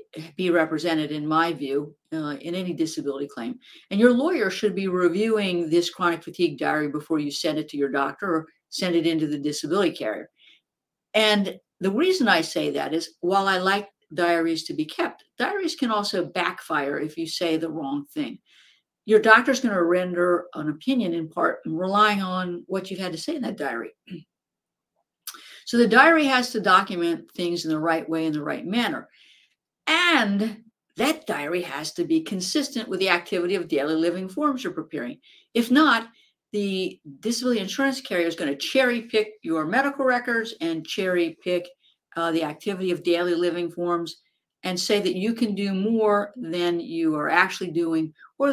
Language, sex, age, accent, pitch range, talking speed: English, female, 50-69, American, 165-225 Hz, 180 wpm